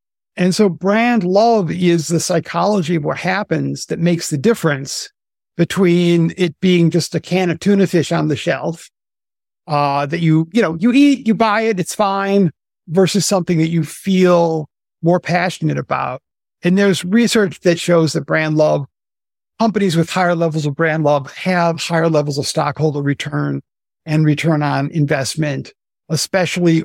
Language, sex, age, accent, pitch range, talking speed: English, male, 50-69, American, 155-185 Hz, 160 wpm